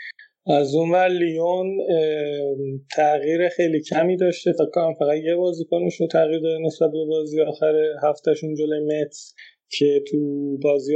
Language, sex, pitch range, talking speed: Persian, male, 135-160 Hz, 120 wpm